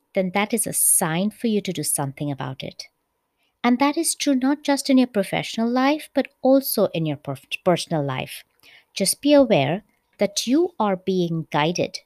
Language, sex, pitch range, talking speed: English, female, 170-255 Hz, 180 wpm